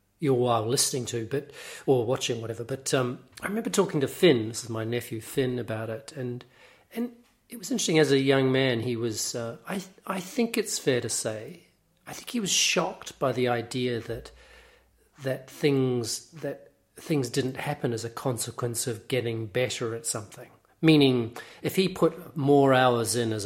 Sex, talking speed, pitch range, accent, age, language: male, 185 wpm, 120-150 Hz, Australian, 40-59, English